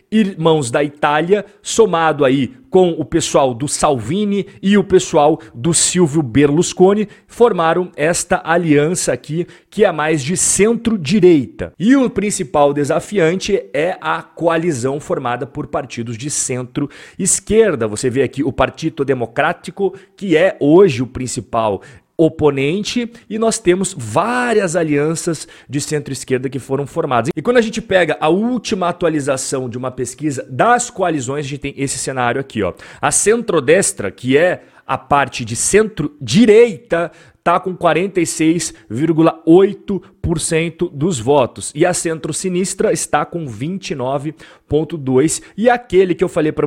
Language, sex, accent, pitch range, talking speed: Portuguese, male, Brazilian, 140-190 Hz, 130 wpm